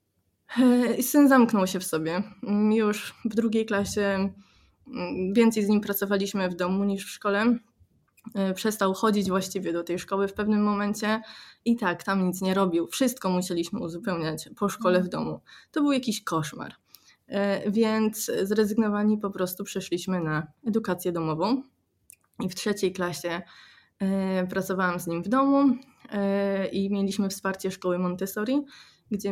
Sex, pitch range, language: female, 185-225 Hz, Polish